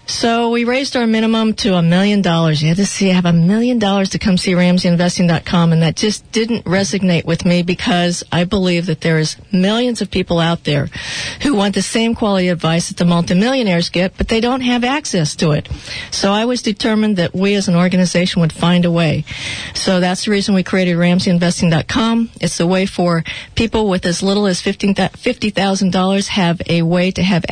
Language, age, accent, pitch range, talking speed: English, 40-59, American, 175-205 Hz, 200 wpm